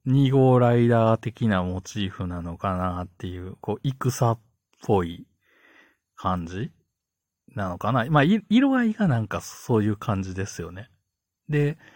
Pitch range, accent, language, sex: 90-120 Hz, native, Japanese, male